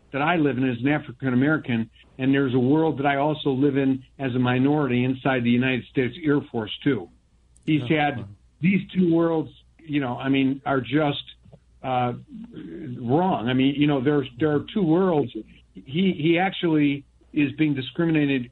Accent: American